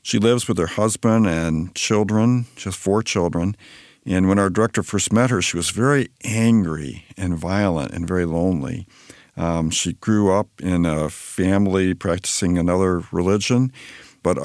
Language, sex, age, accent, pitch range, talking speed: English, male, 50-69, American, 85-110 Hz, 155 wpm